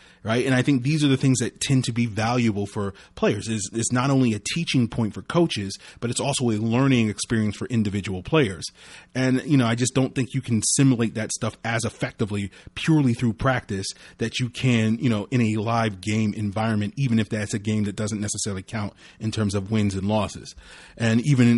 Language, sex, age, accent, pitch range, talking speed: English, male, 30-49, American, 105-130 Hz, 215 wpm